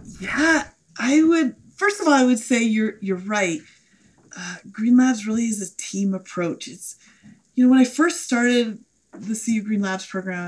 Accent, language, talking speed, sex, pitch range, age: American, English, 185 wpm, female, 195-255 Hz, 30-49